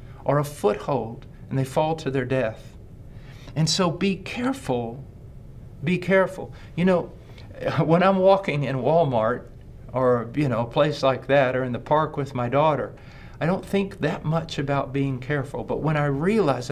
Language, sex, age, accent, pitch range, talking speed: English, male, 50-69, American, 120-150 Hz, 170 wpm